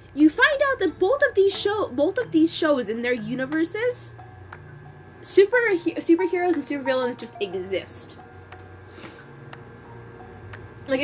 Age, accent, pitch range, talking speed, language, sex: 10-29, American, 215-320 Hz, 120 wpm, English, female